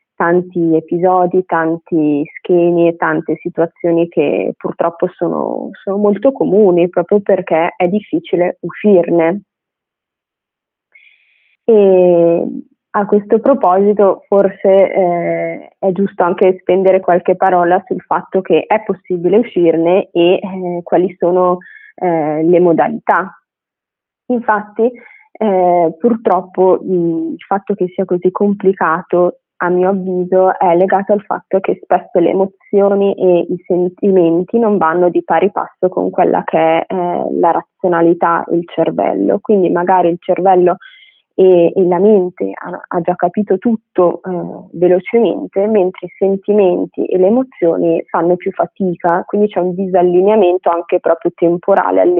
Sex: female